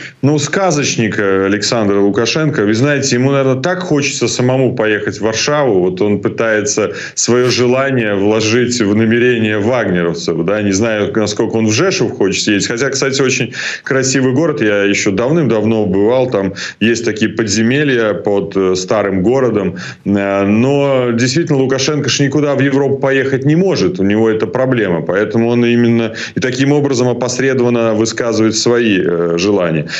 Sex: male